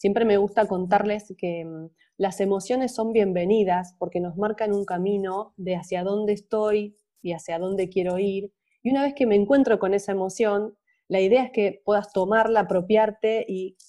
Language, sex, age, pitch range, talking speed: Spanish, female, 20-39, 175-220 Hz, 175 wpm